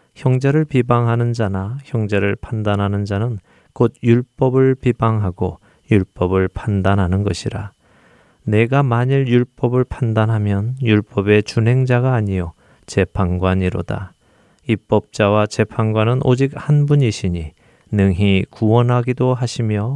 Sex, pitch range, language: male, 95-125 Hz, Korean